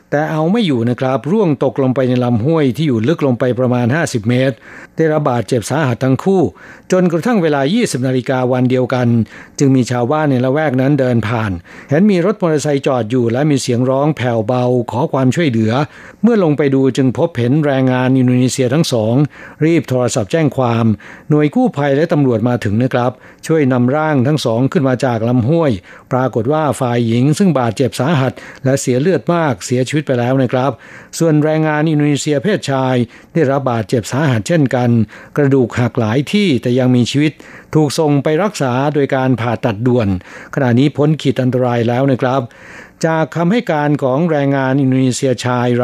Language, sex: Thai, male